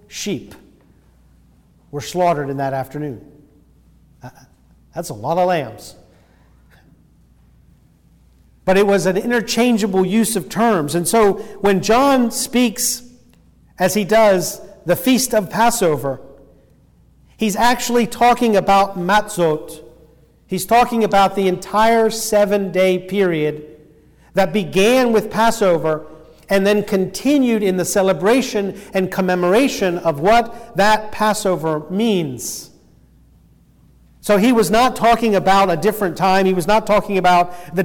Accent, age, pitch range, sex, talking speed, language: American, 50-69, 160-210 Hz, male, 120 wpm, English